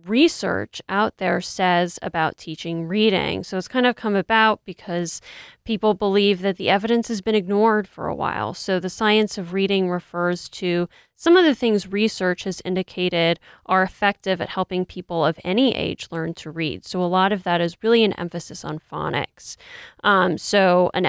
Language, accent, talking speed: English, American, 180 wpm